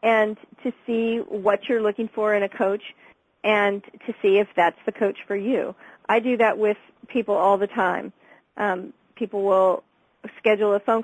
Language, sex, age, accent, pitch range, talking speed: English, female, 40-59, American, 195-230 Hz, 180 wpm